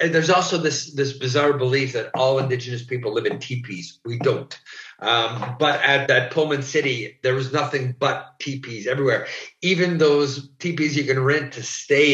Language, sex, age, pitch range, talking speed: German, male, 50-69, 130-150 Hz, 180 wpm